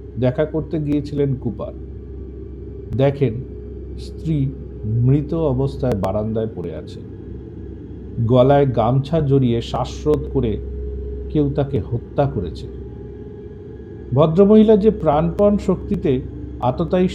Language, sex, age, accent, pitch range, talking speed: Bengali, male, 50-69, native, 105-160 Hz, 90 wpm